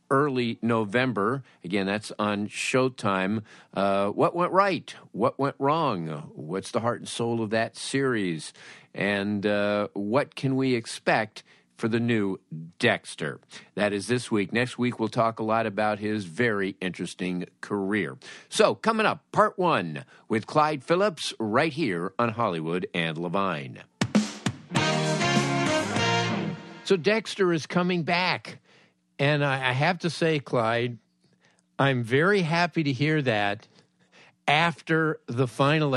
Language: English